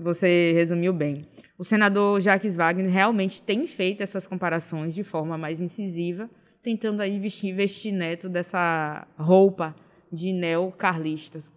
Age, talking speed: 20-39, 130 wpm